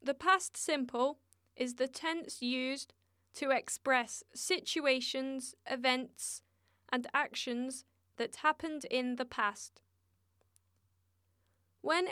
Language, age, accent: English, 10-29, British